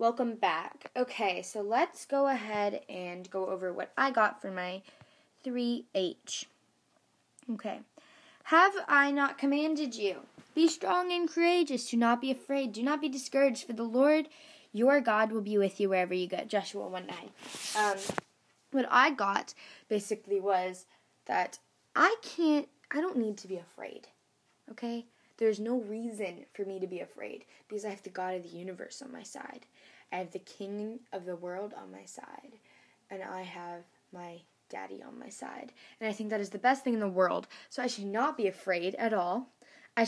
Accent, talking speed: American, 180 wpm